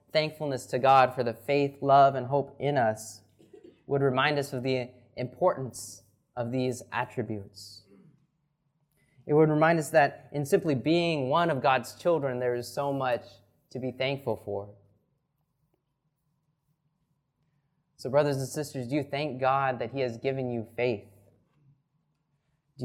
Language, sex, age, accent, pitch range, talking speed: English, male, 20-39, American, 120-145 Hz, 145 wpm